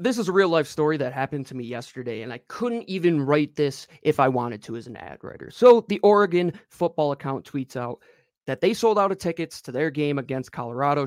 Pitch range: 140-180 Hz